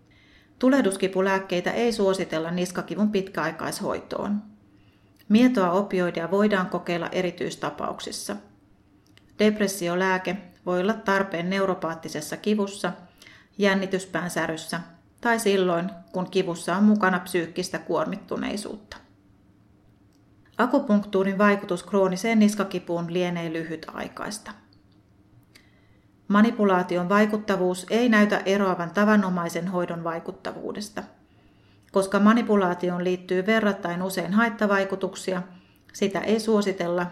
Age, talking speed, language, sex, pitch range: 30-49, 80 wpm, Finnish, female, 165-200 Hz